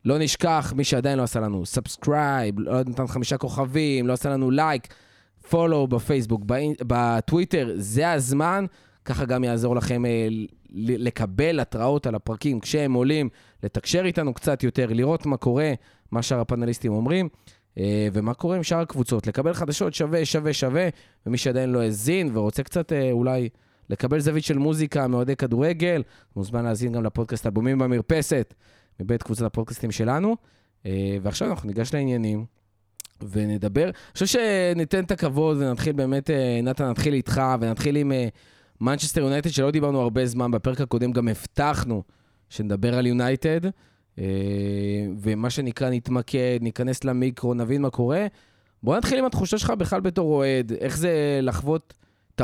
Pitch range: 115-150 Hz